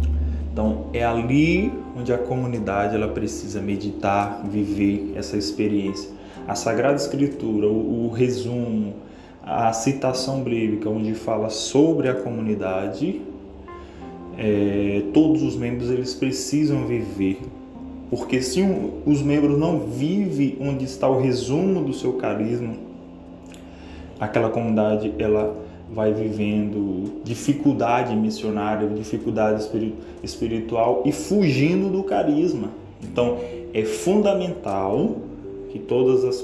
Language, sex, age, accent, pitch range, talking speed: Portuguese, male, 20-39, Brazilian, 105-145 Hz, 105 wpm